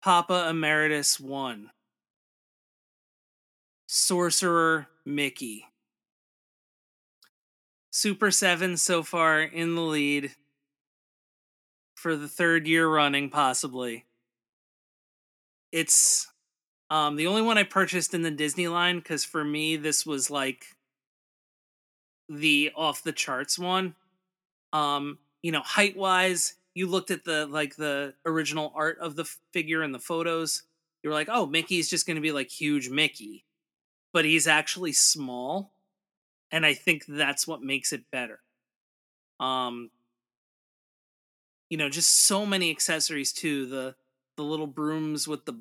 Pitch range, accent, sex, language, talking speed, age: 145-170 Hz, American, male, English, 125 wpm, 30-49